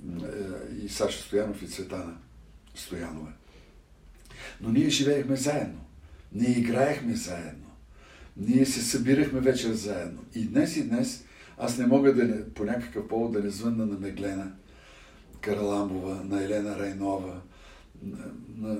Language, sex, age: Bulgarian, male, 60-79